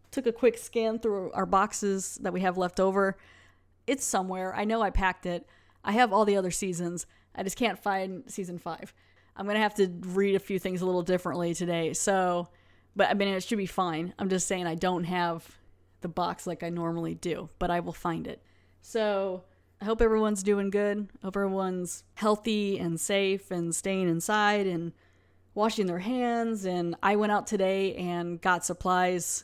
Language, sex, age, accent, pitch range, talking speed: English, female, 20-39, American, 175-205 Hz, 195 wpm